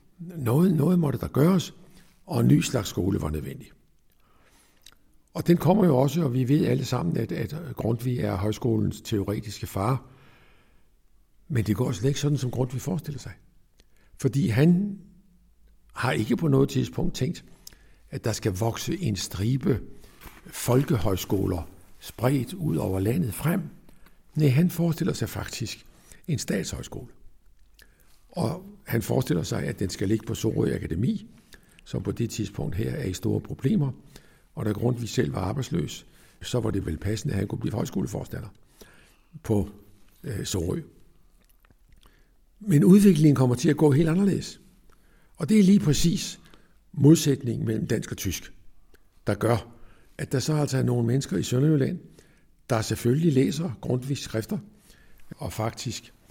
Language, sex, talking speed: Danish, male, 150 wpm